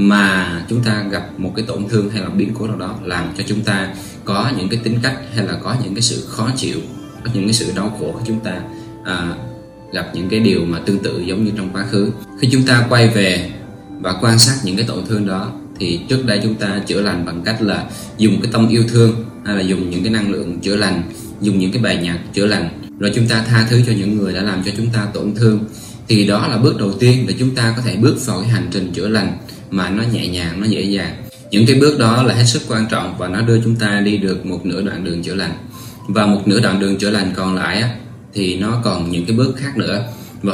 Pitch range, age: 95-115 Hz, 20-39